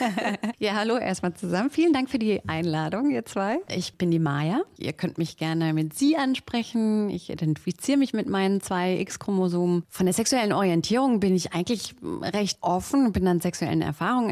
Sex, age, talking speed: female, 30-49, 175 wpm